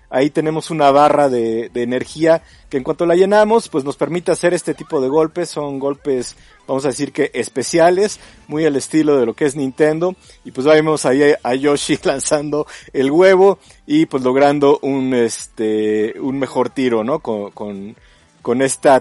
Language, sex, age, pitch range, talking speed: Spanish, male, 50-69, 130-165 Hz, 175 wpm